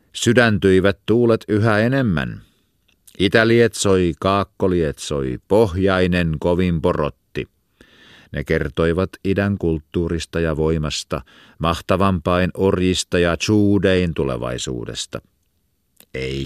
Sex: male